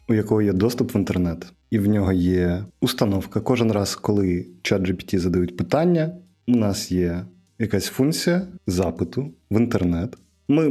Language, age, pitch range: Ukrainian, 30-49, 95-120 Hz